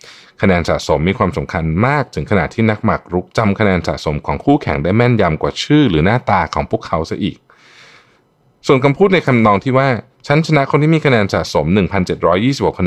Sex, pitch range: male, 80-125 Hz